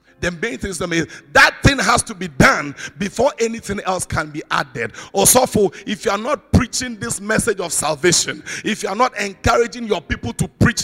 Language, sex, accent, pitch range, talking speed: English, male, Nigerian, 175-235 Hz, 210 wpm